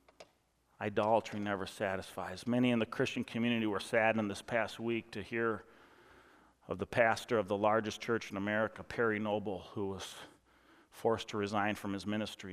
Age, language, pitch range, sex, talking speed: 40-59, English, 105-115 Hz, male, 165 wpm